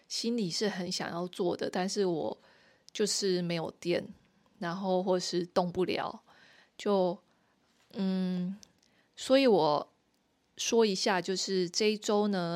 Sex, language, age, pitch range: female, Chinese, 20-39, 170-200 Hz